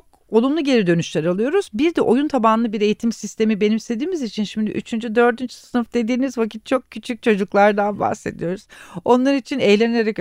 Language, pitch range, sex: Turkish, 165-235 Hz, female